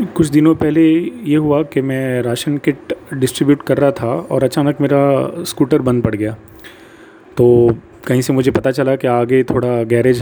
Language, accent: English, Indian